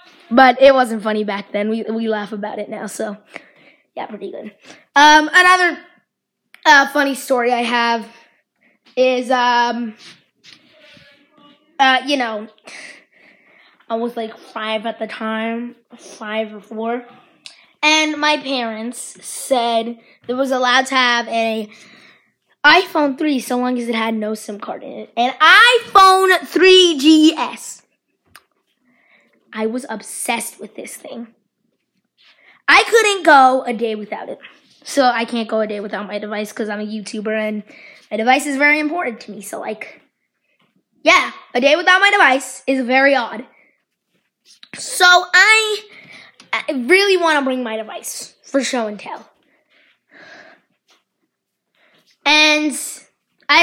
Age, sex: 20-39, female